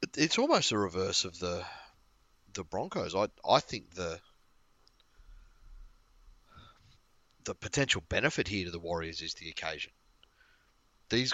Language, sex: English, male